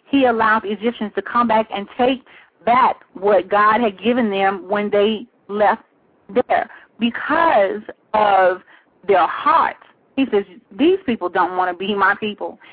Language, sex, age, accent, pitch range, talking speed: English, female, 30-49, American, 190-235 Hz, 150 wpm